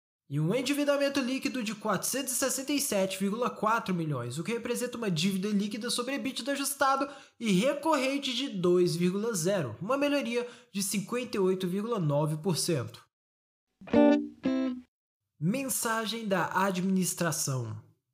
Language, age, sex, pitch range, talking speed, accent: Portuguese, 20-39, male, 180-255 Hz, 95 wpm, Brazilian